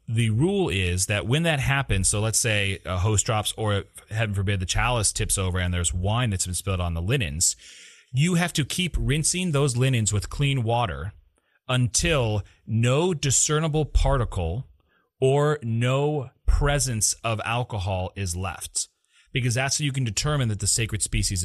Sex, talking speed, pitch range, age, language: male, 170 wpm, 95-125 Hz, 30-49, English